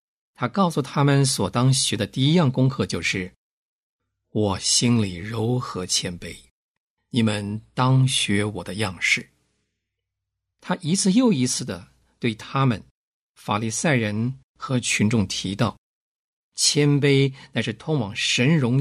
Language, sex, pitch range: Chinese, male, 100-135 Hz